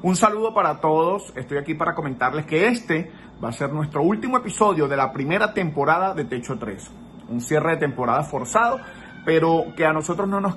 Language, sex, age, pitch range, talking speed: Spanish, male, 30-49, 125-165 Hz, 195 wpm